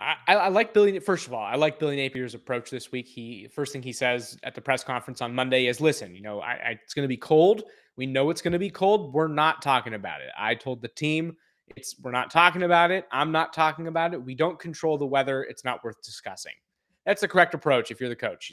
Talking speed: 255 wpm